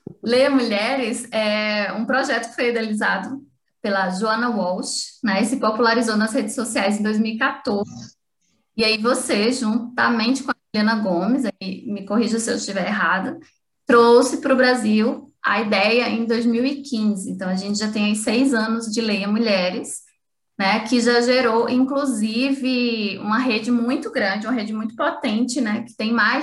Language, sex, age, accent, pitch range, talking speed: Portuguese, female, 20-39, Brazilian, 215-255 Hz, 155 wpm